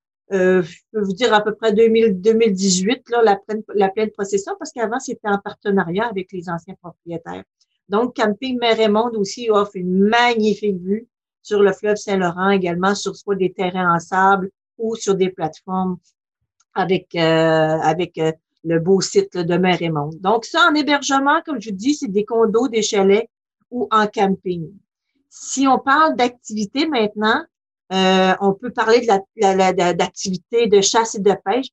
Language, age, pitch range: French, 50-69, 190-230 Hz